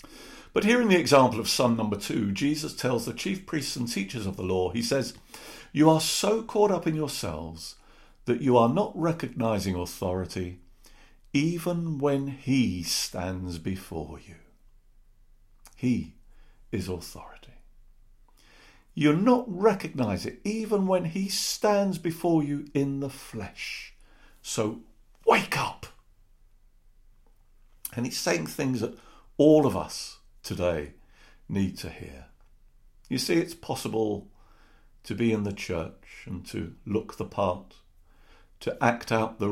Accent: British